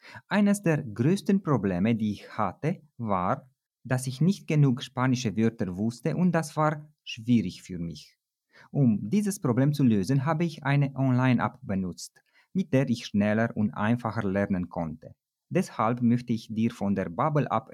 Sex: male